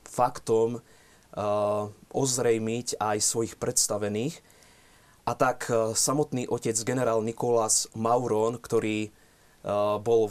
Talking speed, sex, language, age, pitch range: 80 wpm, male, Slovak, 20-39, 110-125 Hz